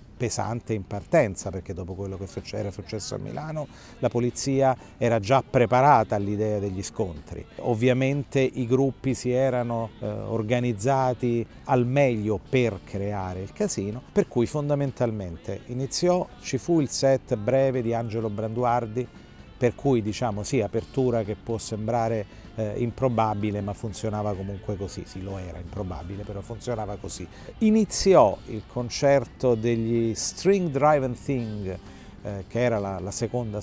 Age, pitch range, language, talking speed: 50-69, 100-125 Hz, Italian, 140 wpm